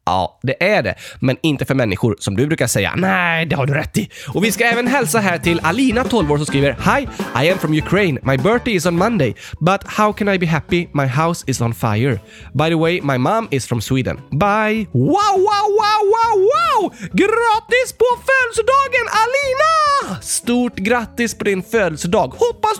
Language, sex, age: Swedish, male, 20-39